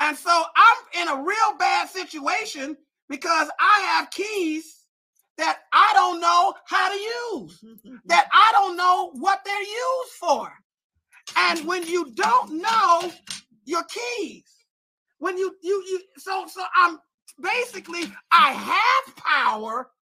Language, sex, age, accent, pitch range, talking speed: English, male, 40-59, American, 275-390 Hz, 135 wpm